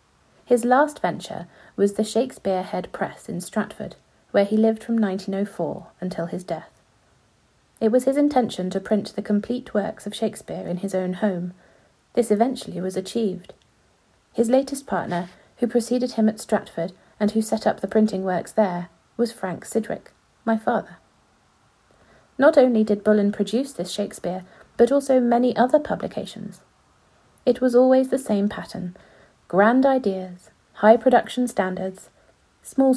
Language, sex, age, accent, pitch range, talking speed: English, female, 40-59, British, 185-240 Hz, 150 wpm